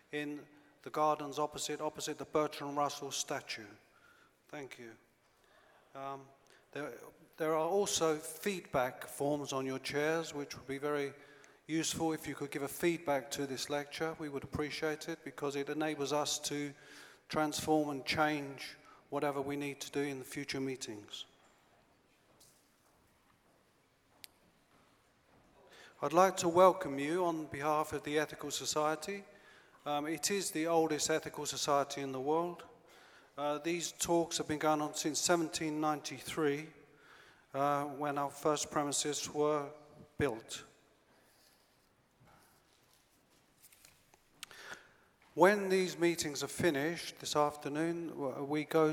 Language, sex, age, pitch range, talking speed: English, male, 40-59, 140-155 Hz, 125 wpm